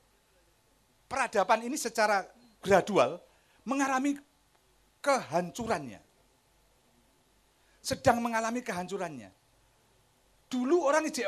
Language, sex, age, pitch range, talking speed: Indonesian, male, 50-69, 210-275 Hz, 65 wpm